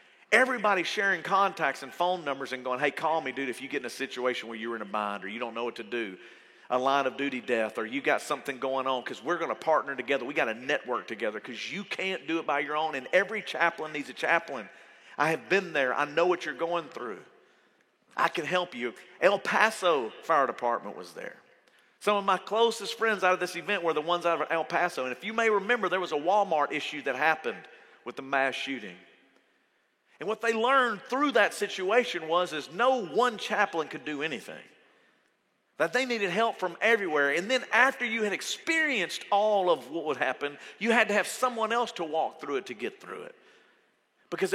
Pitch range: 140-220 Hz